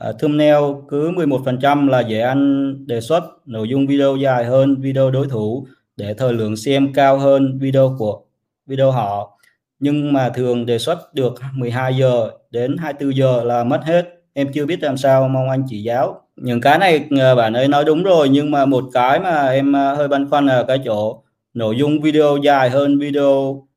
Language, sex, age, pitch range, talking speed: Vietnamese, male, 20-39, 120-145 Hz, 190 wpm